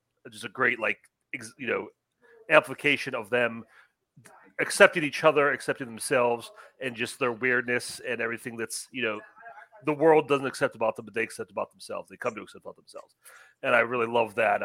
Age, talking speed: 40-59, 190 wpm